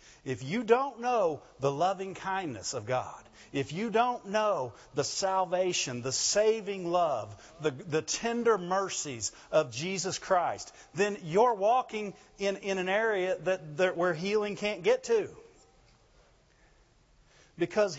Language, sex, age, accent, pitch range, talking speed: English, male, 50-69, American, 125-205 Hz, 125 wpm